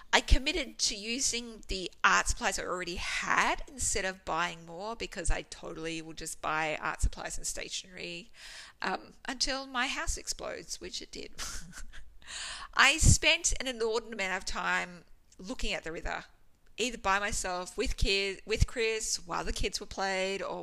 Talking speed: 165 wpm